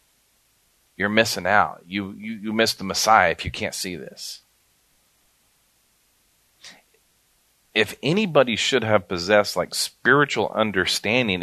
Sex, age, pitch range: male, 40-59, 95-110 Hz